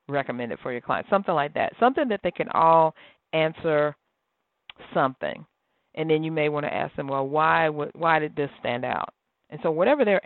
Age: 40-59